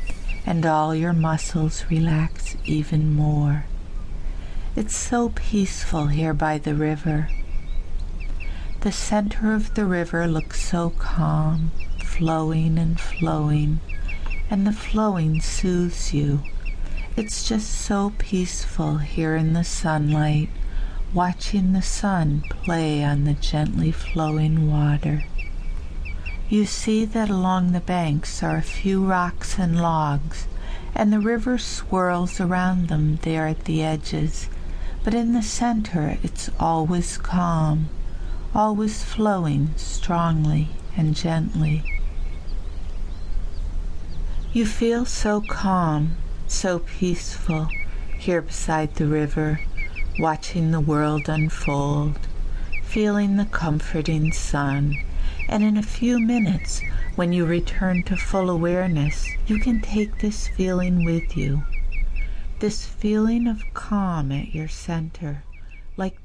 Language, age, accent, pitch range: English, 60-79, American, 145-185 Hz